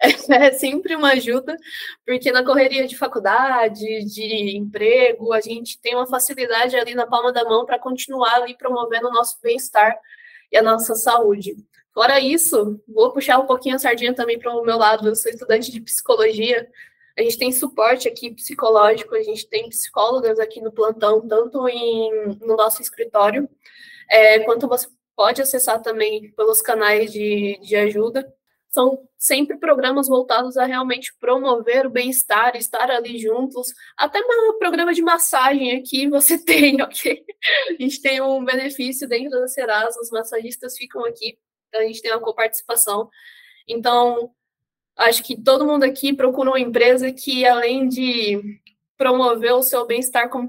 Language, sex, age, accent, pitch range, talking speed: Portuguese, female, 10-29, Brazilian, 225-265 Hz, 160 wpm